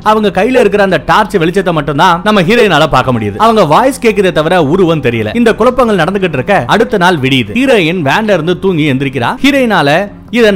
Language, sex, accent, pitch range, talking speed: Tamil, male, native, 145-205 Hz, 175 wpm